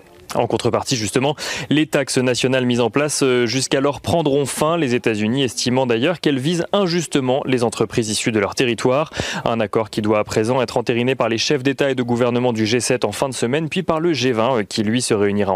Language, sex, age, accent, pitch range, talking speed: French, male, 30-49, French, 125-155 Hz, 210 wpm